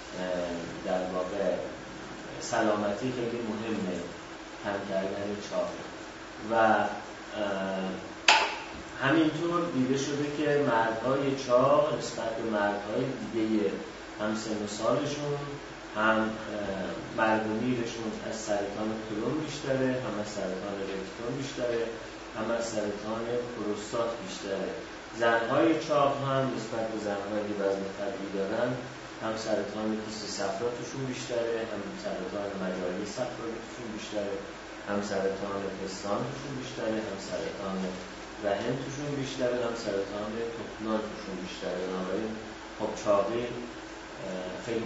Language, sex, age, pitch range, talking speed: Persian, male, 30-49, 100-120 Hz, 105 wpm